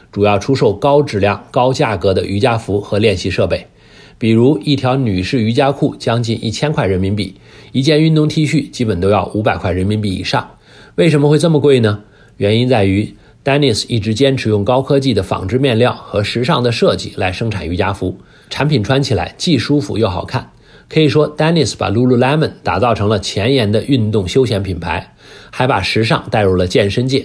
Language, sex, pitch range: English, male, 100-140 Hz